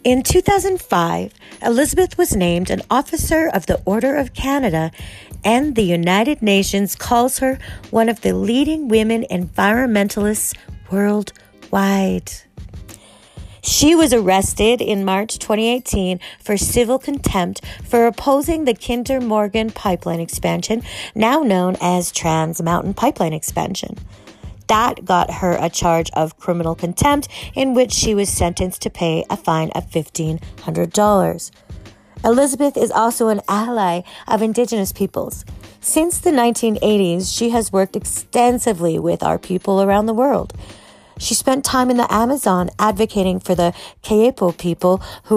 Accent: American